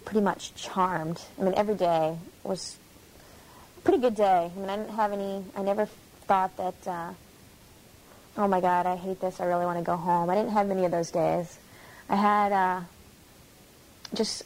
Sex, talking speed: female, 190 wpm